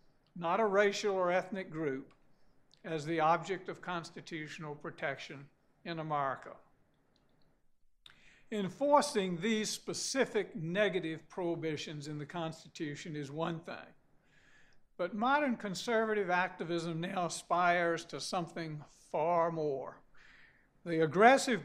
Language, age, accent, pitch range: English, 60-79, American, 165-205 Hz